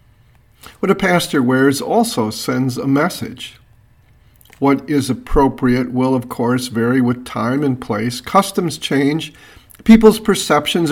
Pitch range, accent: 120-155 Hz, American